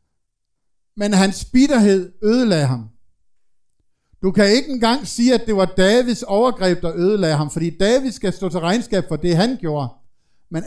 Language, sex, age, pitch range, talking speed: Danish, male, 60-79, 150-220 Hz, 165 wpm